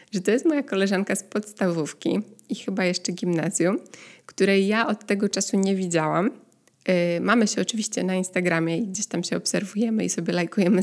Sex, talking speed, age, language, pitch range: female, 170 wpm, 20-39, Polish, 185-225 Hz